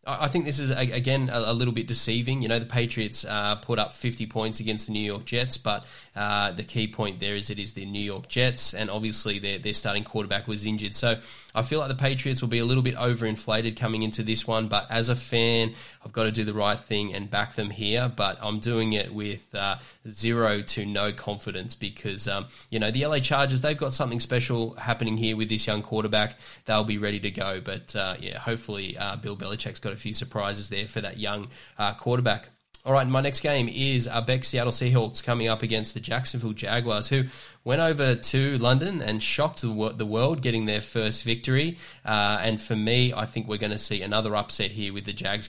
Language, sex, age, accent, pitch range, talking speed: English, male, 10-29, Australian, 105-125 Hz, 220 wpm